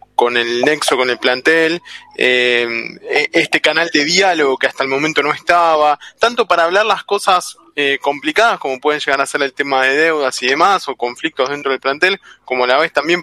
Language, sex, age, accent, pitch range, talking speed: Spanish, male, 20-39, Argentinian, 140-185 Hz, 205 wpm